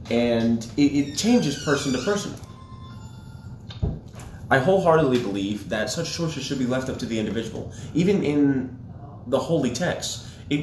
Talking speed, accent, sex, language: 145 wpm, American, male, English